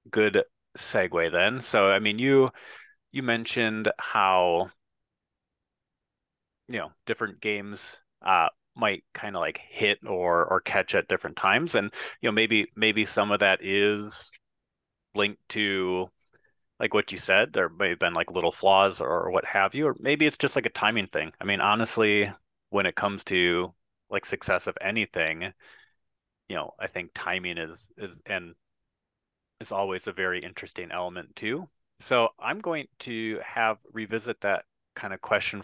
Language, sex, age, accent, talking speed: English, male, 30-49, American, 165 wpm